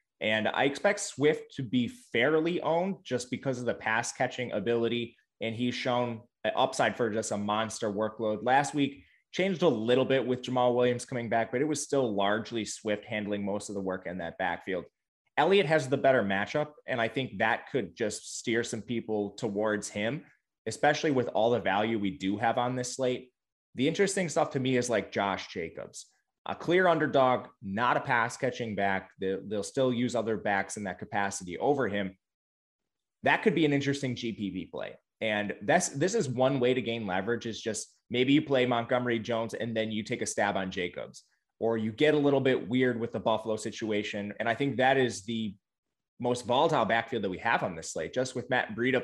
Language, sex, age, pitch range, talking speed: English, male, 20-39, 105-130 Hz, 200 wpm